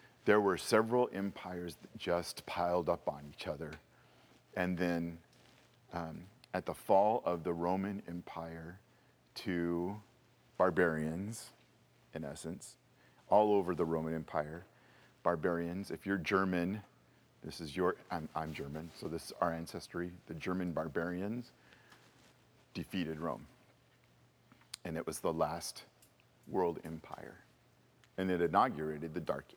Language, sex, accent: English, male, American